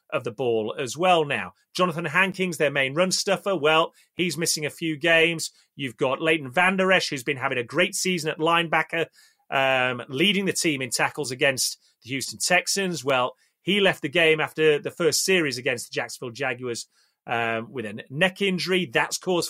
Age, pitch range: 30-49, 135-185 Hz